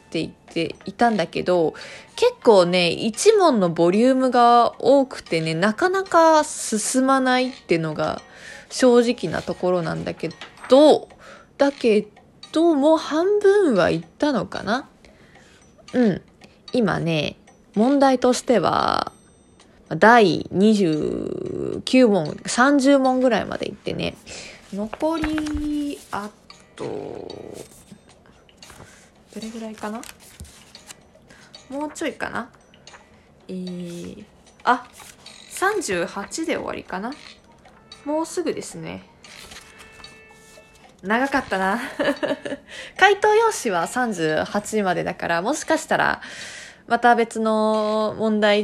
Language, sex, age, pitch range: Japanese, female, 20-39, 200-295 Hz